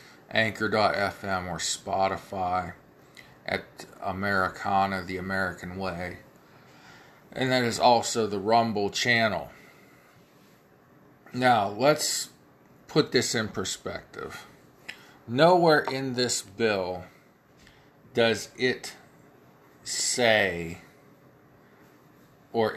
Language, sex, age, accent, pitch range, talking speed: English, male, 40-59, American, 95-120 Hz, 75 wpm